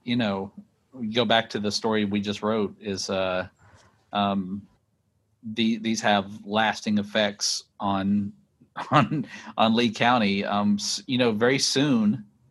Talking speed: 140 wpm